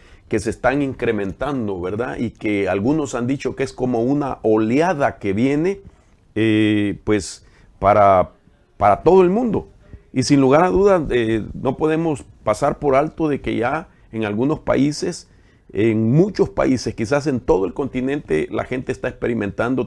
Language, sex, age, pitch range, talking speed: English, male, 50-69, 100-140 Hz, 155 wpm